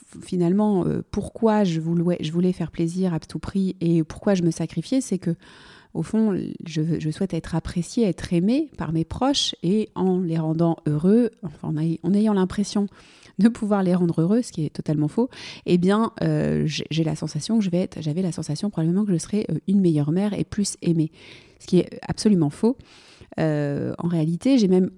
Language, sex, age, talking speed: French, female, 30-49, 200 wpm